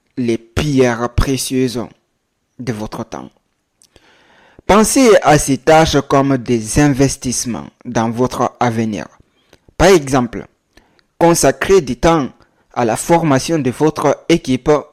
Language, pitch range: French, 125-165 Hz